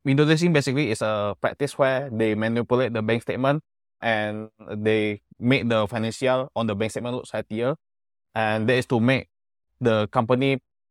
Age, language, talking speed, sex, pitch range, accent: 20-39, English, 165 wpm, male, 105-125 Hz, Indonesian